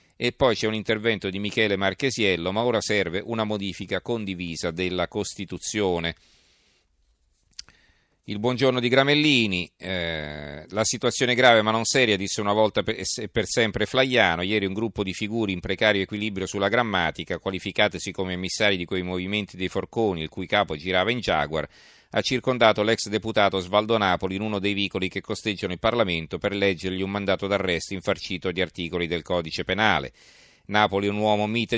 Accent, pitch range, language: native, 90-110 Hz, Italian